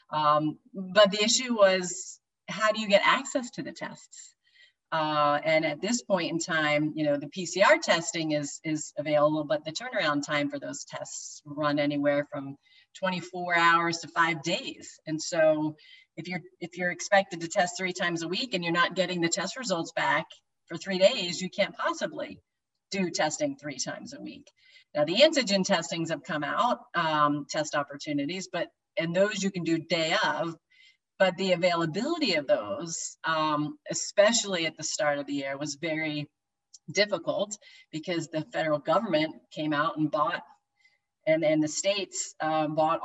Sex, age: female, 40-59